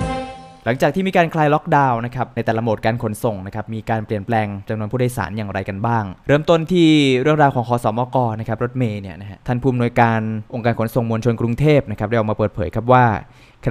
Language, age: Thai, 20-39